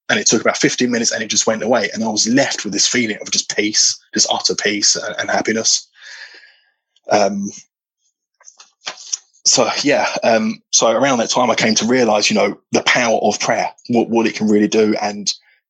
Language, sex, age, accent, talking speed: English, male, 20-39, British, 200 wpm